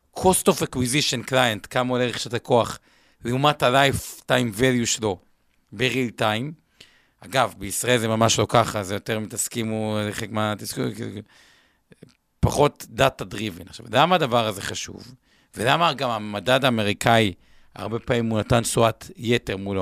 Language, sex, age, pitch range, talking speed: Hebrew, male, 50-69, 110-140 Hz, 130 wpm